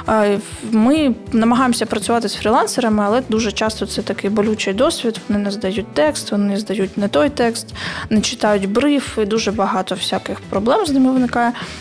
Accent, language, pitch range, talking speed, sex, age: native, Ukrainian, 210-250 Hz, 165 wpm, female, 20-39